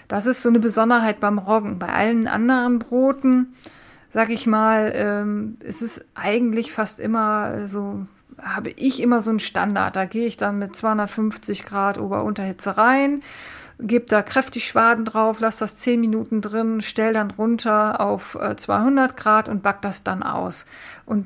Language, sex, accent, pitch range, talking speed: German, female, German, 200-230 Hz, 165 wpm